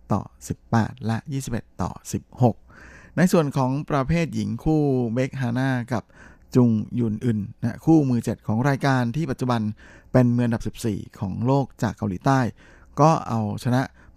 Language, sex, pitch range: Thai, male, 105-130 Hz